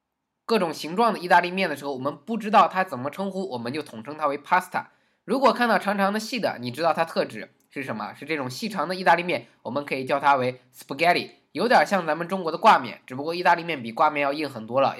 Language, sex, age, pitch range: Chinese, male, 20-39, 145-200 Hz